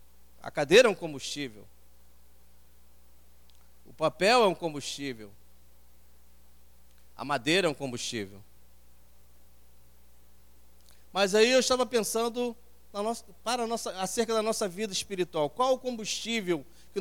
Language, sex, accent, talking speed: English, male, Brazilian, 120 wpm